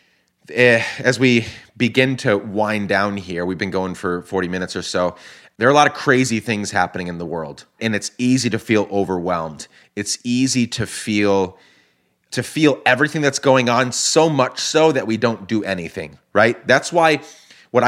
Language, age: English, 30-49